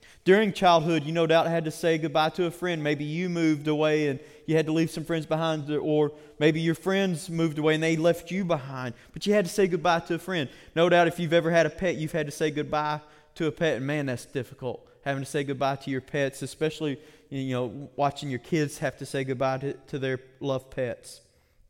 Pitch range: 145-170 Hz